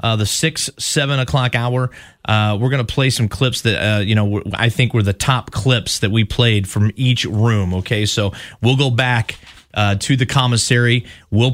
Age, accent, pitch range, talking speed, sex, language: 30-49, American, 110-130 Hz, 205 wpm, male, English